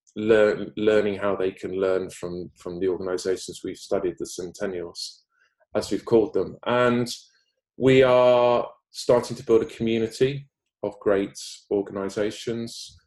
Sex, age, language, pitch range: male, 20-39, English, 100-125 Hz